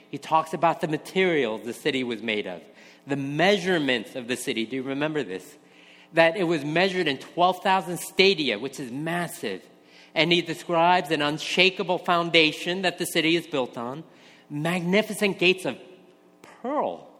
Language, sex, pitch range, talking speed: English, male, 110-180 Hz, 155 wpm